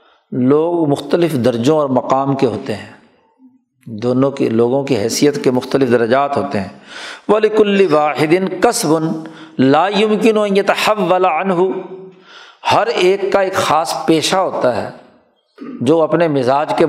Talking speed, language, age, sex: 140 wpm, Urdu, 50-69, male